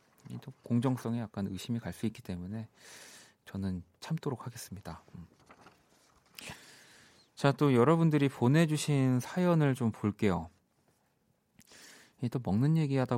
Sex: male